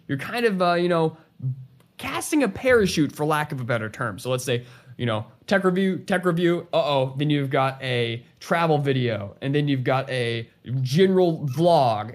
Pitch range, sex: 130-190 Hz, male